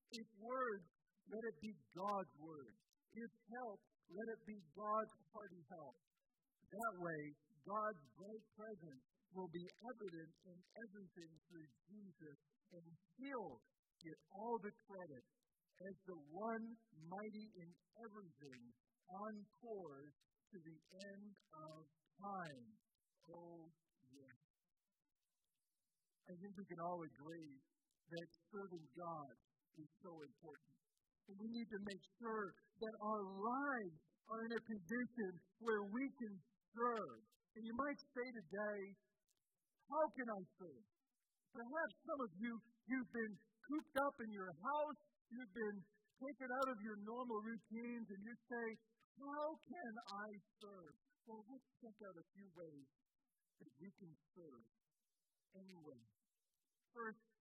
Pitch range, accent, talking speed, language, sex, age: 175-230 Hz, American, 130 wpm, English, male, 50-69